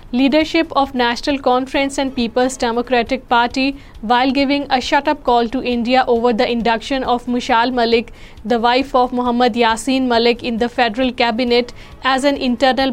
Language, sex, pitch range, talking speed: Urdu, female, 240-265 Hz, 160 wpm